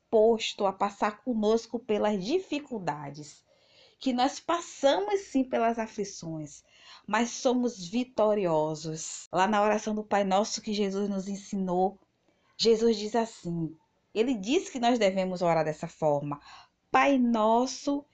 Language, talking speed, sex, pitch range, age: Portuguese, 125 wpm, female, 180-245 Hz, 20-39